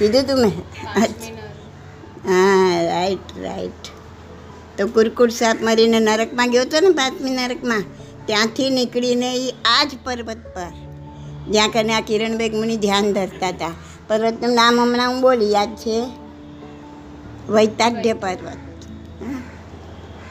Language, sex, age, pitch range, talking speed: Gujarati, male, 60-79, 190-245 Hz, 120 wpm